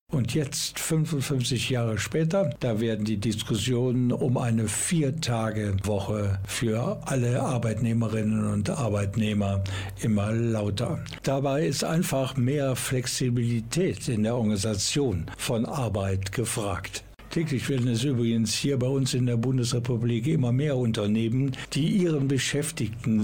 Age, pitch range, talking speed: 60-79, 105-130 Hz, 120 wpm